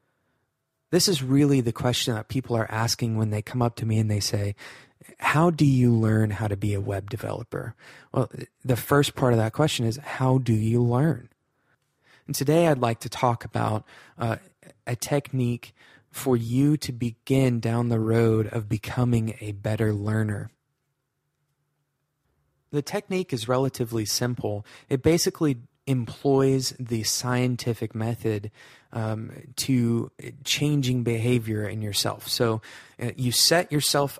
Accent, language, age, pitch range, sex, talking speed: American, English, 20-39, 115-130 Hz, male, 145 wpm